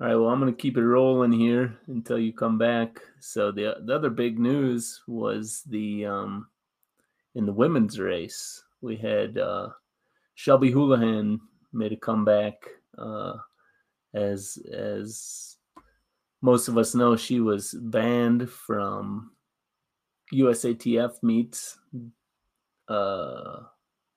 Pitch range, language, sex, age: 110-125 Hz, English, male, 30-49